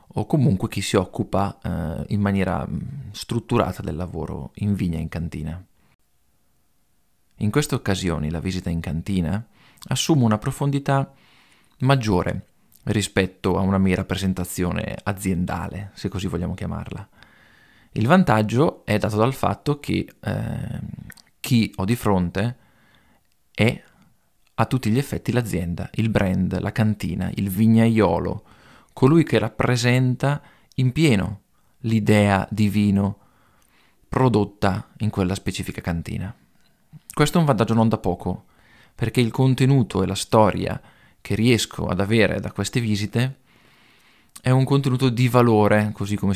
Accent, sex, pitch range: native, male, 95-125 Hz